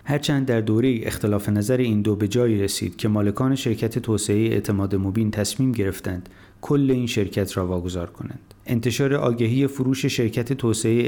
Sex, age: male, 30-49